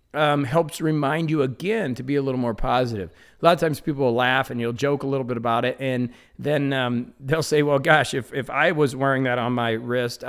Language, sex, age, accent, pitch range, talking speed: English, male, 40-59, American, 120-145 Hz, 245 wpm